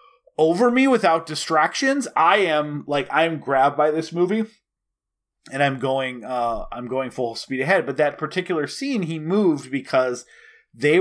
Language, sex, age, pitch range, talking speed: English, male, 30-49, 125-165 Hz, 165 wpm